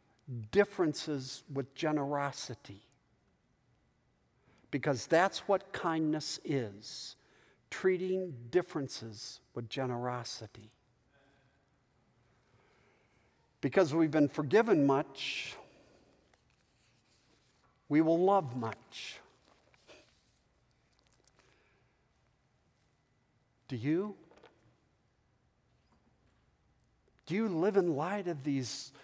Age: 50-69